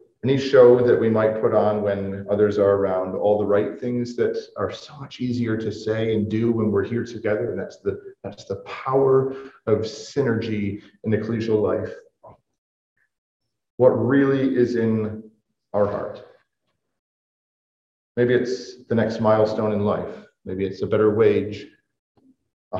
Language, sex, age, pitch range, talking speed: English, male, 40-59, 105-130 Hz, 155 wpm